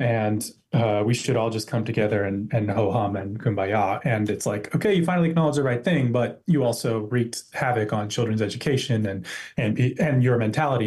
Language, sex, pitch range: English, male, 115-140 Hz